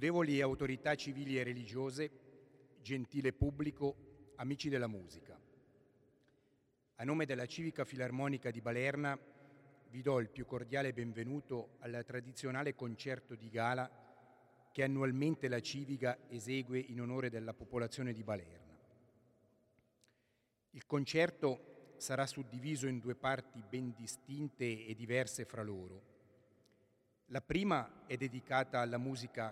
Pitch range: 120-135 Hz